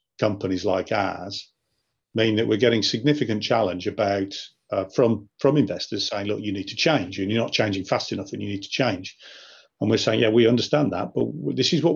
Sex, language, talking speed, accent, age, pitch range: male, English, 210 wpm, British, 40-59, 105-125 Hz